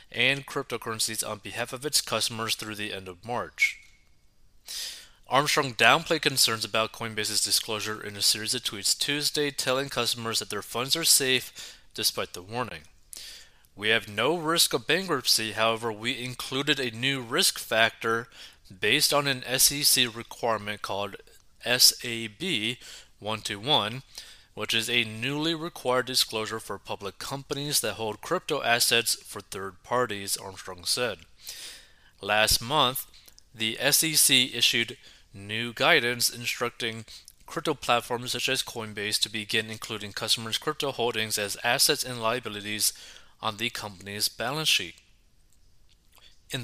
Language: English